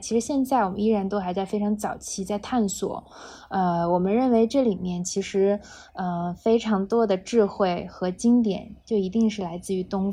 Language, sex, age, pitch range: Chinese, female, 20-39, 190-230 Hz